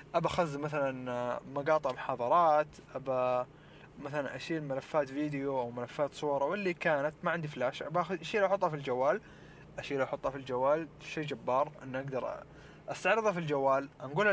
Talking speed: 145 wpm